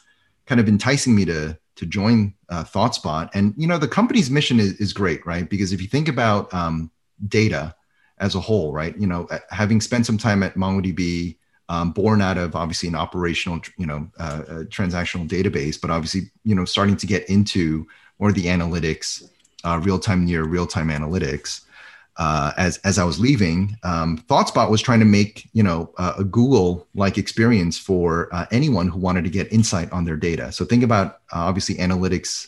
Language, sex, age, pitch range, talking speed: English, male, 30-49, 85-110 Hz, 185 wpm